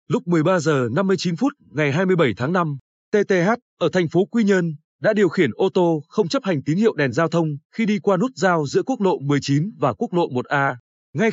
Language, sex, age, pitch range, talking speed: Vietnamese, male, 20-39, 145-200 Hz, 220 wpm